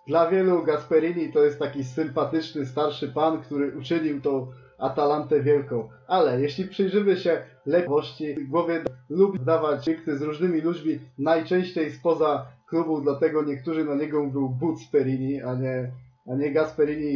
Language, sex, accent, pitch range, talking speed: Polish, male, native, 135-160 Hz, 145 wpm